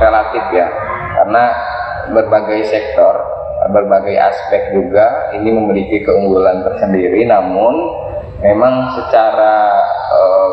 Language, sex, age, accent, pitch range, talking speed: Indonesian, male, 20-39, native, 110-130 Hz, 90 wpm